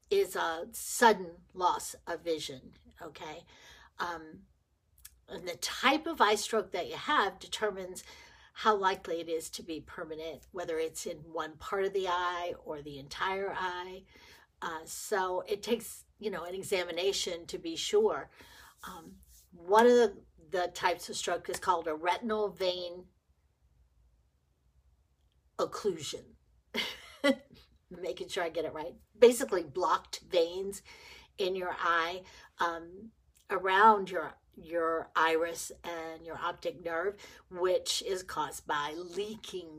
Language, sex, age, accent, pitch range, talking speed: English, female, 50-69, American, 165-215 Hz, 135 wpm